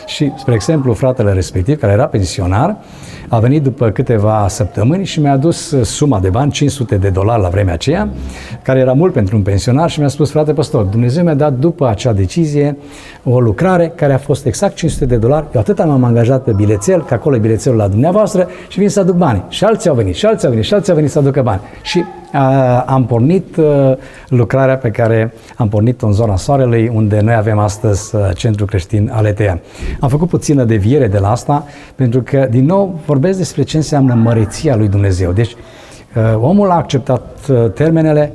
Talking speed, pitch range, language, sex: 195 wpm, 115-150 Hz, Romanian, male